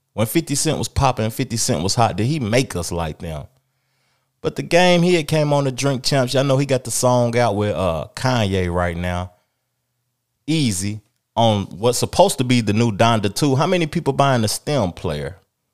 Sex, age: male, 20-39